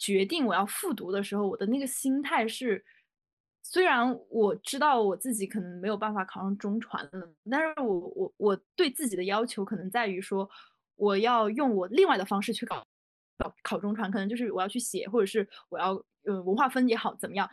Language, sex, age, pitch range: Chinese, female, 20-39, 195-245 Hz